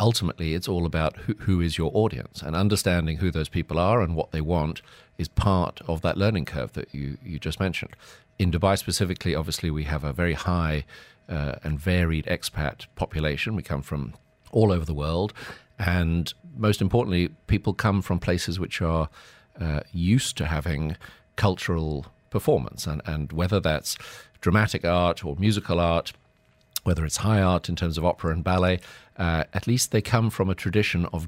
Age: 50-69